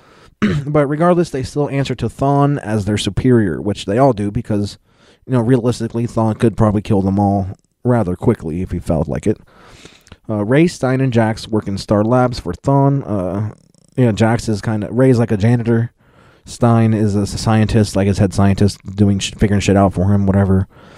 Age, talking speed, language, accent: 30-49, 195 wpm, English, American